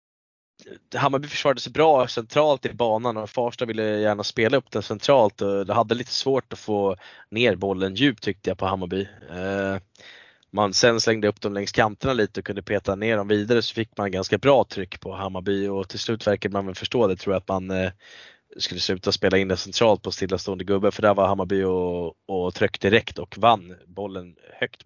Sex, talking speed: male, 205 wpm